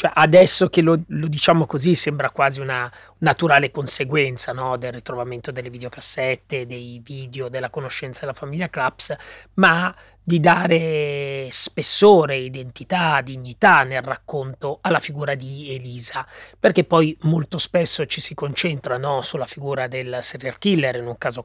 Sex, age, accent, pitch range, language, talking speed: male, 30-49, native, 125-160 Hz, Italian, 145 wpm